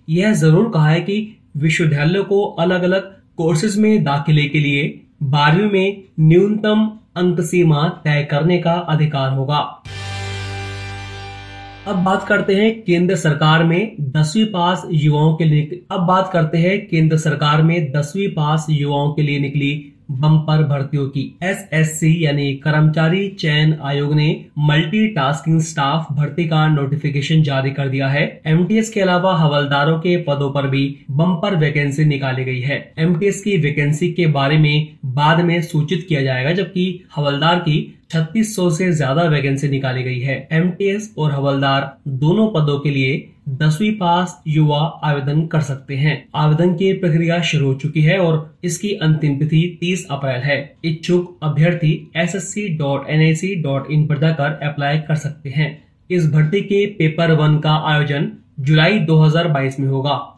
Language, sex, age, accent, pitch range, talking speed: Hindi, male, 30-49, native, 145-175 Hz, 150 wpm